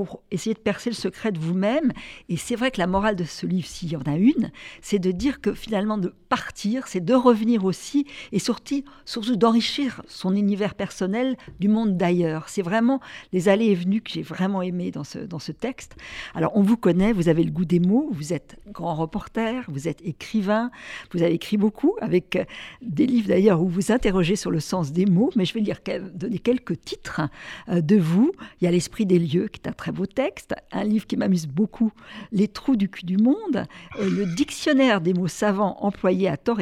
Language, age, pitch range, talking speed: French, 50-69, 175-225 Hz, 215 wpm